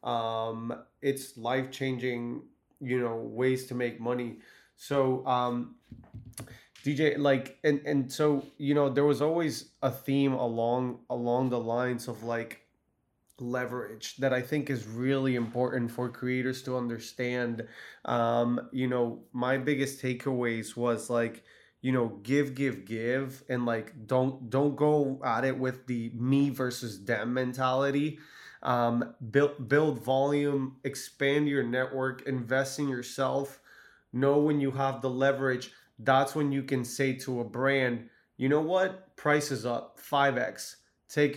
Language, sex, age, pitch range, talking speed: English, male, 20-39, 120-135 Hz, 140 wpm